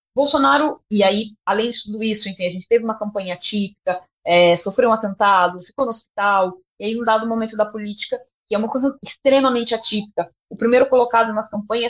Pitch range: 185-255 Hz